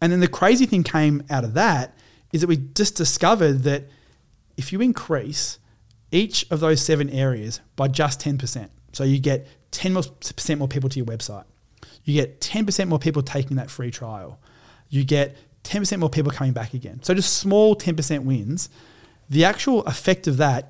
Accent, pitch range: Australian, 125-155 Hz